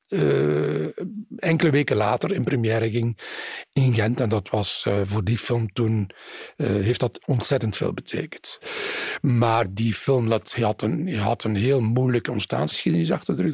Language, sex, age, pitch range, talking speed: Dutch, male, 50-69, 110-165 Hz, 145 wpm